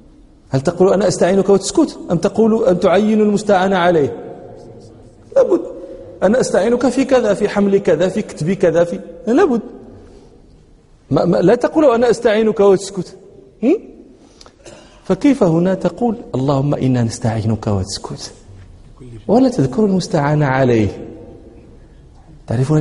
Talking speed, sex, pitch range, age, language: 110 wpm, male, 120-190 Hz, 40-59, Danish